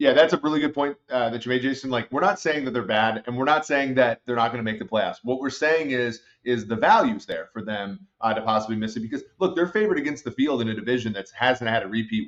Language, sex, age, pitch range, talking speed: English, male, 30-49, 110-135 Hz, 295 wpm